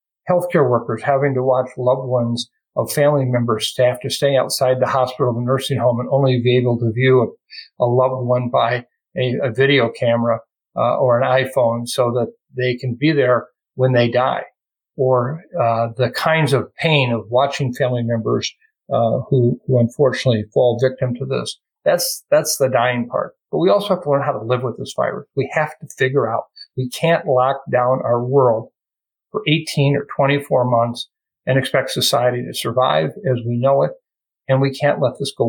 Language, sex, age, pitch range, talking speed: English, male, 50-69, 125-140 Hz, 190 wpm